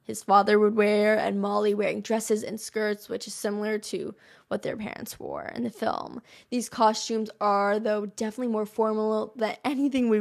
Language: English